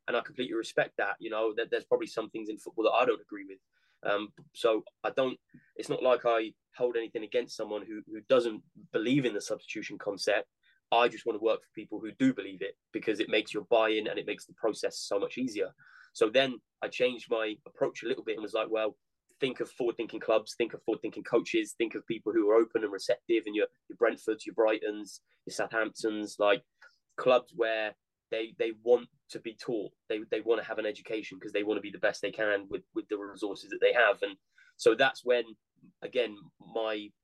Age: 20-39